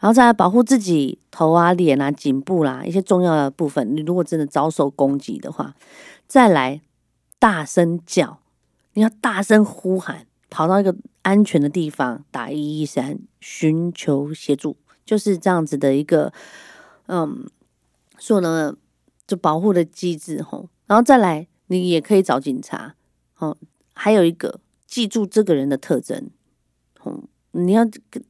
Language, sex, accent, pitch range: Chinese, female, American, 155-205 Hz